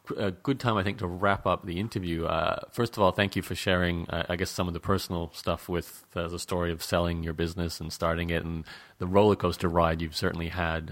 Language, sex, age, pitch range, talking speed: English, male, 30-49, 85-95 Hz, 245 wpm